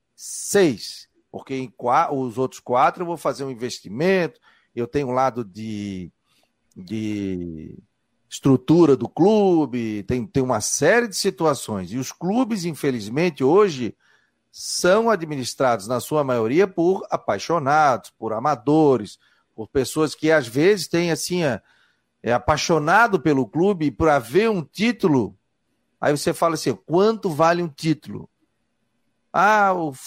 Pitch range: 125-170 Hz